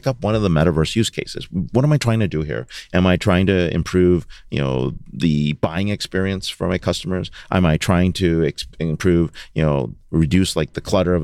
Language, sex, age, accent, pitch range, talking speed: English, male, 30-49, American, 85-105 Hz, 210 wpm